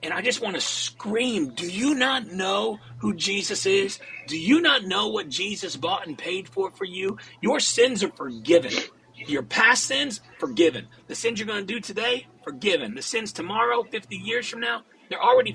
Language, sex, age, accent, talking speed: English, male, 40-59, American, 195 wpm